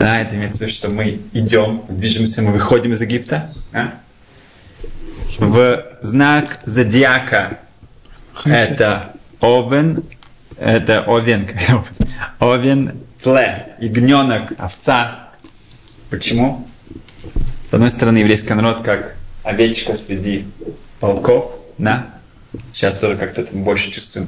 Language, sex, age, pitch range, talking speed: Russian, male, 20-39, 105-125 Hz, 100 wpm